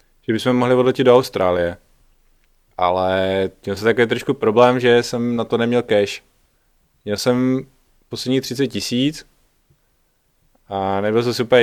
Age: 20-39